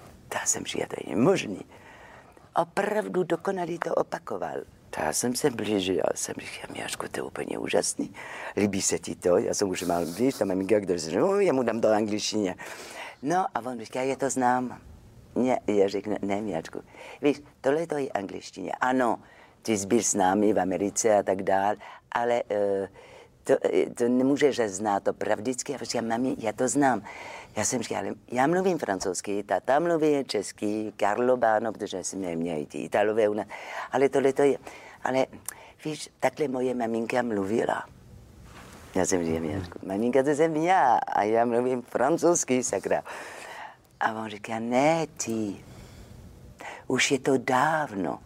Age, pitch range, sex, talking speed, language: 50-69, 100-135 Hz, female, 175 wpm, Czech